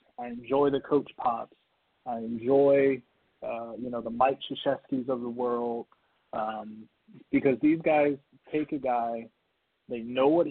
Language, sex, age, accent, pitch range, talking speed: English, male, 20-39, American, 130-165 Hz, 150 wpm